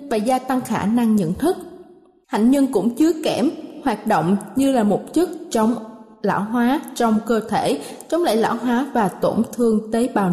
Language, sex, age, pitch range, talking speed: Vietnamese, female, 20-39, 220-275 Hz, 190 wpm